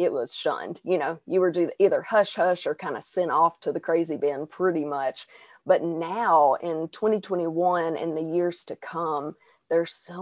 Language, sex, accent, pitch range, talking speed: English, female, American, 160-185 Hz, 190 wpm